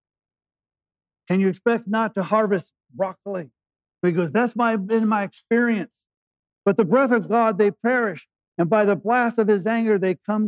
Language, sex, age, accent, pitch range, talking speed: English, male, 50-69, American, 145-205 Hz, 170 wpm